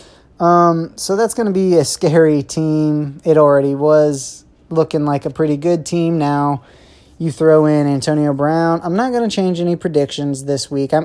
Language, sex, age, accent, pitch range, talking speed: English, male, 30-49, American, 135-165 Hz, 175 wpm